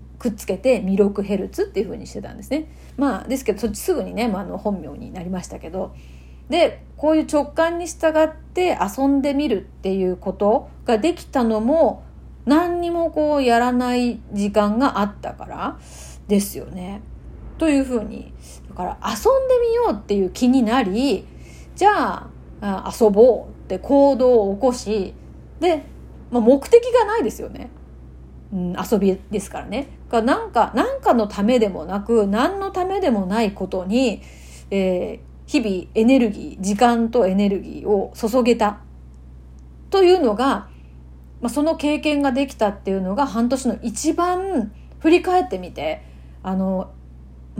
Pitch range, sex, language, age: 195-290 Hz, female, Japanese, 30-49